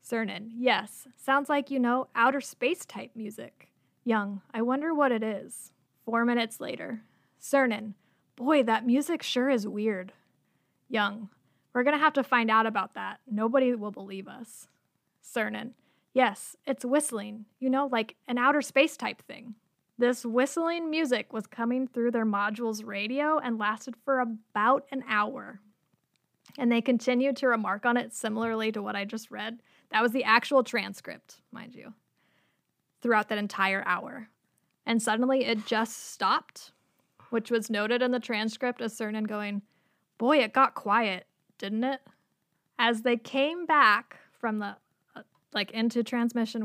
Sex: female